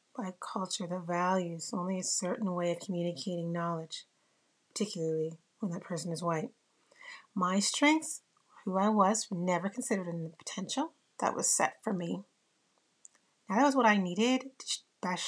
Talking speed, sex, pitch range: 160 wpm, female, 180-235 Hz